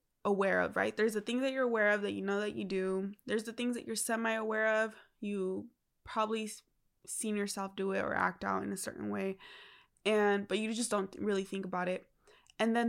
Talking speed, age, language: 220 wpm, 20-39, English